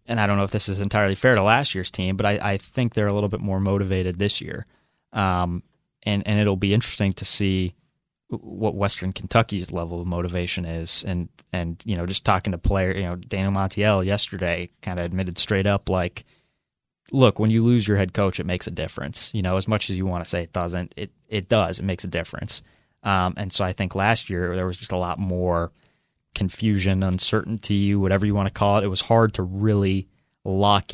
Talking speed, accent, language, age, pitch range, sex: 225 wpm, American, English, 20-39, 90-105 Hz, male